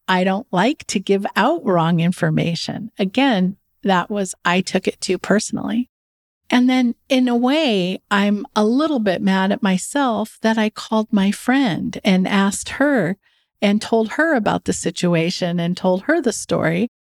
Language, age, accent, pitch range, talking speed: English, 50-69, American, 190-245 Hz, 165 wpm